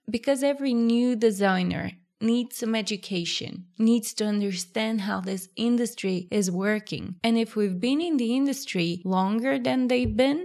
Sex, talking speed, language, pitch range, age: female, 150 wpm, English, 190-235 Hz, 20-39